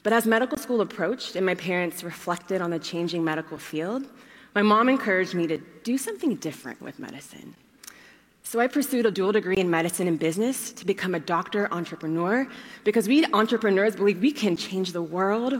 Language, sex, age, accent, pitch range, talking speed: English, female, 20-39, American, 165-230 Hz, 185 wpm